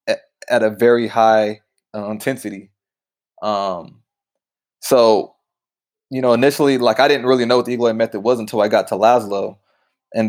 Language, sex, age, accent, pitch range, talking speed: English, male, 20-39, American, 105-130 Hz, 165 wpm